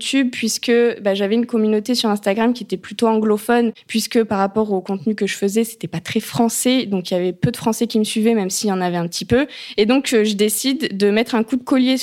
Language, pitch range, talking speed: French, 200-235 Hz, 255 wpm